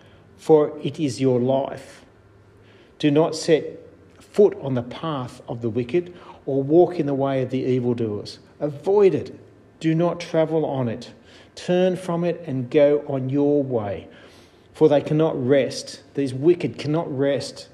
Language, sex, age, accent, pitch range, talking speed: English, male, 40-59, Australian, 120-150 Hz, 155 wpm